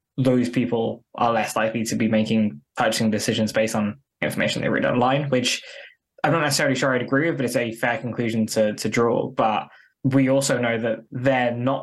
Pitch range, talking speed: 115-135 Hz, 200 wpm